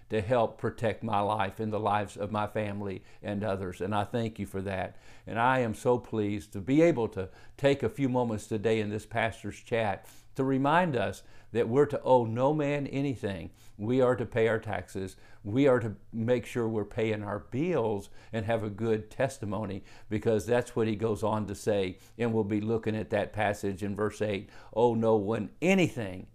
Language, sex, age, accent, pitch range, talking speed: English, male, 50-69, American, 105-120 Hz, 205 wpm